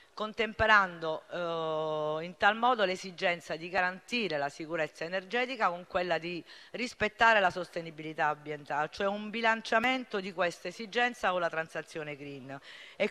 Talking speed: 135 wpm